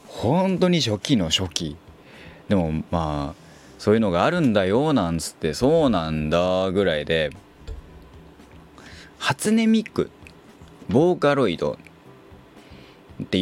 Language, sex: Japanese, male